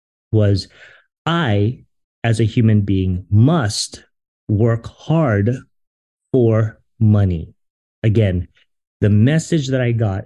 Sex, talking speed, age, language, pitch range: male, 100 wpm, 30-49, English, 100-125 Hz